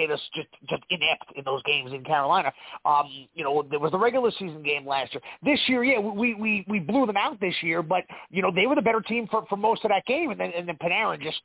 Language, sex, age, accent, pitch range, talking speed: English, male, 30-49, American, 155-220 Hz, 265 wpm